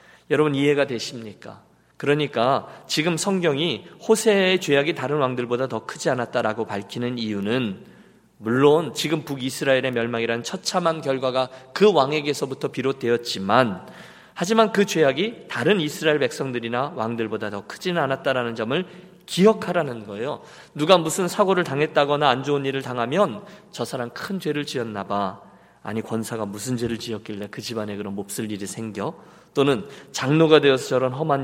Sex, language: male, Korean